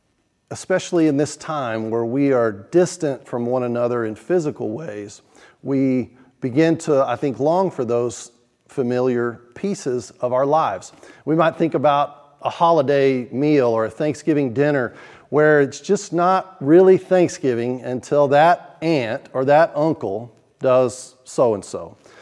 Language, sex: English, male